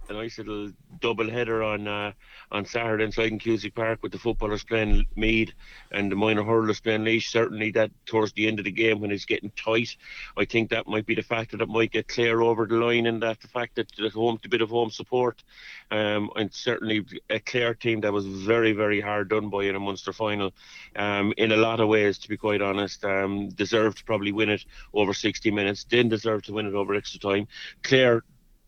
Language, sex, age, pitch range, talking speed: English, male, 30-49, 105-115 Hz, 220 wpm